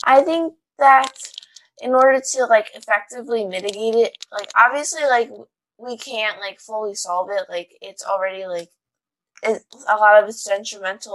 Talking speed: 155 wpm